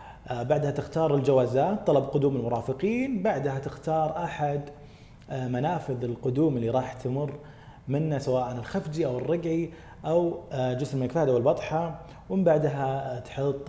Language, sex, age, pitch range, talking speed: Arabic, male, 30-49, 120-145 Hz, 125 wpm